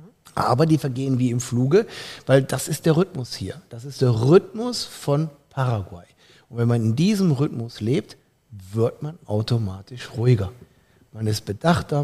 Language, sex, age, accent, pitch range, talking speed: German, male, 50-69, German, 120-150 Hz, 160 wpm